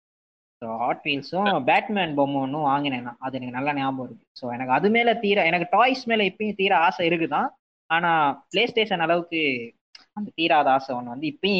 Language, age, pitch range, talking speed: Tamil, 20-39, 140-195 Hz, 180 wpm